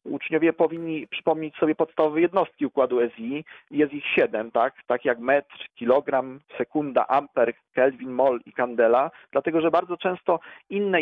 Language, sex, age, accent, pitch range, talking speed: Polish, male, 40-59, native, 135-165 Hz, 145 wpm